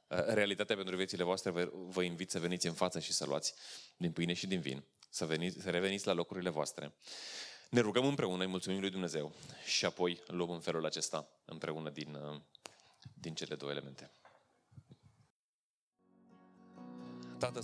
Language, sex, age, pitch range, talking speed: Romanian, male, 20-39, 80-90 Hz, 155 wpm